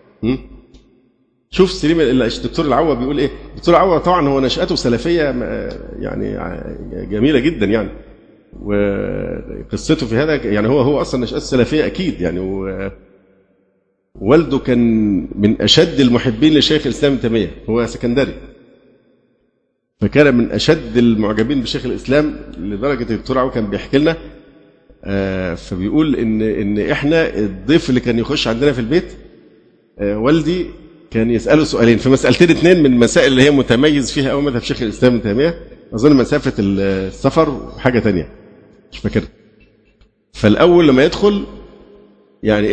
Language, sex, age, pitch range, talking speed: Arabic, male, 50-69, 110-150 Hz, 130 wpm